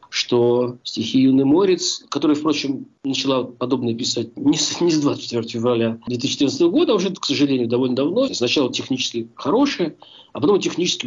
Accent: native